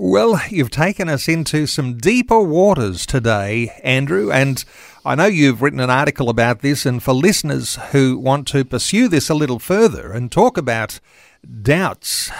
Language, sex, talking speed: English, male, 165 wpm